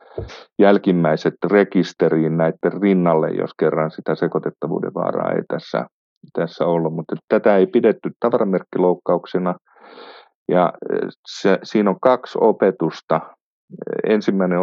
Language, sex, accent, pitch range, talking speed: Finnish, male, native, 85-95 Hz, 90 wpm